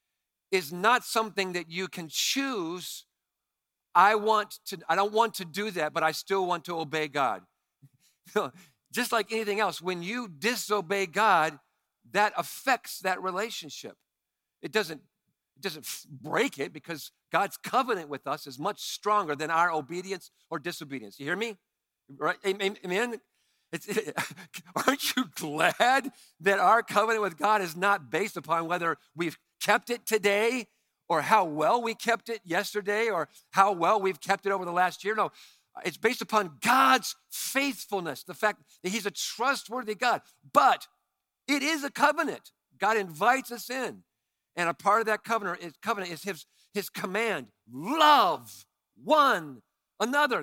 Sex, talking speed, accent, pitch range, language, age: male, 150 wpm, American, 170-225 Hz, English, 50-69